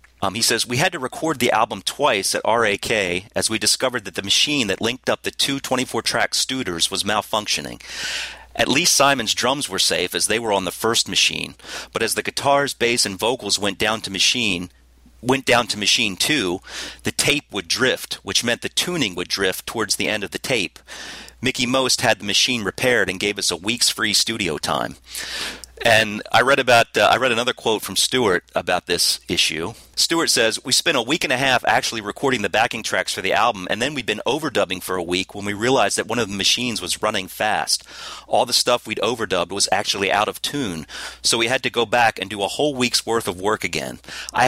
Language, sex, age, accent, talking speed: English, male, 40-59, American, 220 wpm